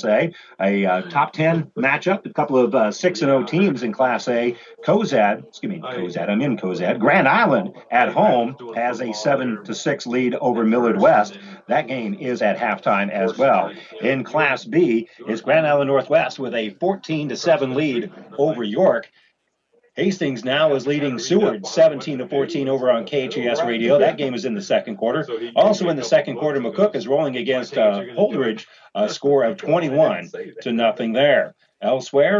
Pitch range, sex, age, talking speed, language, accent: 120-170 Hz, male, 40-59, 170 wpm, English, American